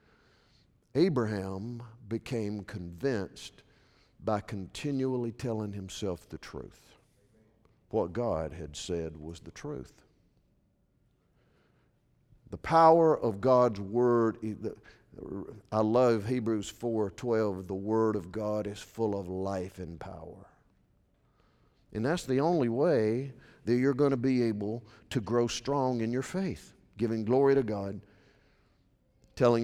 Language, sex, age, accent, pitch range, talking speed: English, male, 50-69, American, 105-130 Hz, 115 wpm